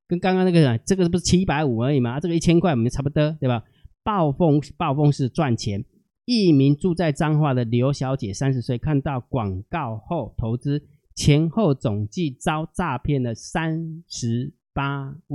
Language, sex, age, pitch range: Chinese, male, 30-49, 120-155 Hz